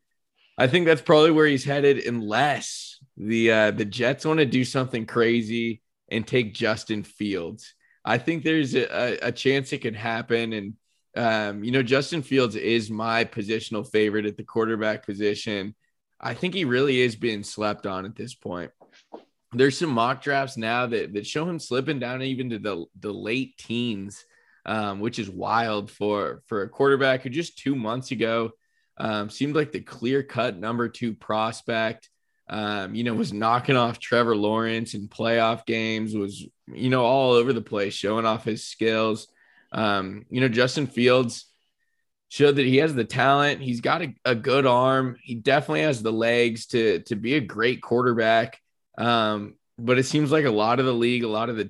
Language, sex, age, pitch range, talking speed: English, male, 20-39, 110-135 Hz, 185 wpm